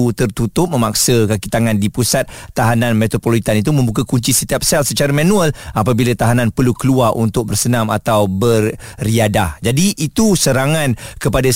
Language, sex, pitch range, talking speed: Malay, male, 120-145 Hz, 140 wpm